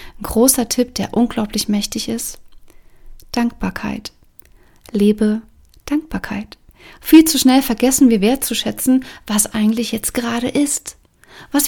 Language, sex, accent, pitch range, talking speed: German, female, German, 210-255 Hz, 115 wpm